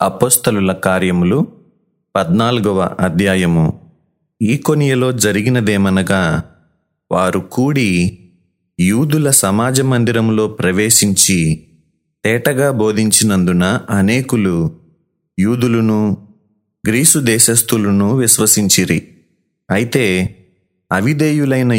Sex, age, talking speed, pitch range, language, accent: male, 30-49, 60 wpm, 95-125 Hz, Telugu, native